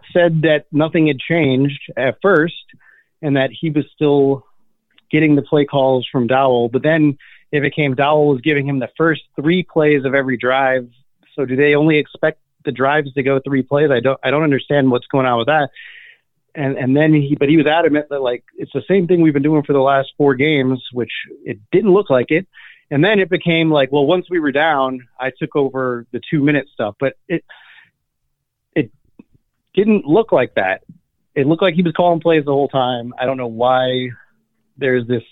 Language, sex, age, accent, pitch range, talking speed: English, male, 30-49, American, 130-155 Hz, 205 wpm